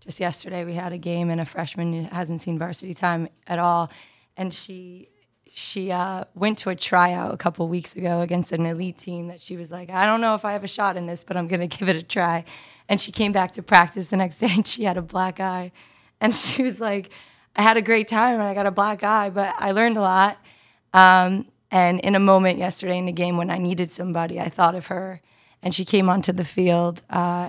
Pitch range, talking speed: 170-185 Hz, 245 wpm